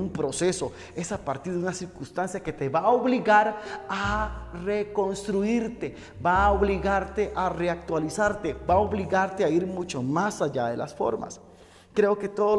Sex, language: male, Spanish